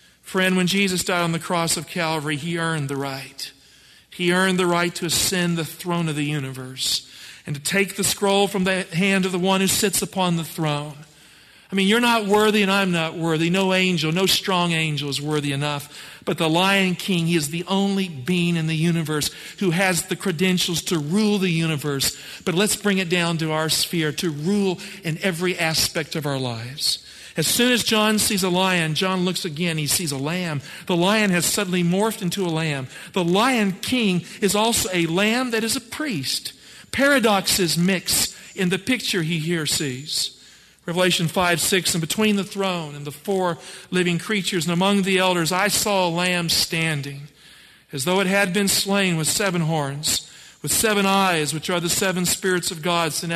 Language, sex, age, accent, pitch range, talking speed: English, male, 50-69, American, 160-195 Hz, 195 wpm